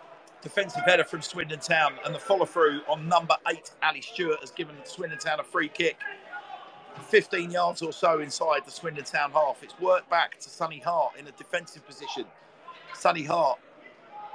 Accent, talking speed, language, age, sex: British, 175 wpm, English, 40-59, male